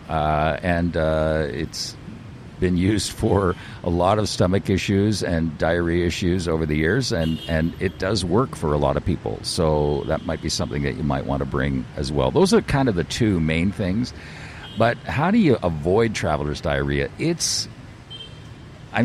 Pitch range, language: 75-95 Hz, English